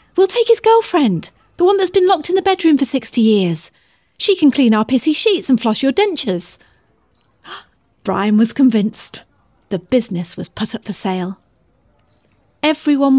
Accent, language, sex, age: British, English, female, 40-59